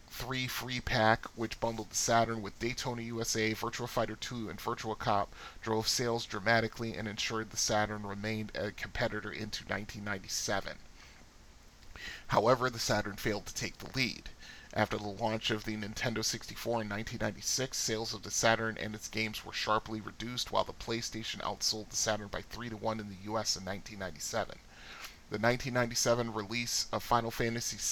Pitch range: 105-115 Hz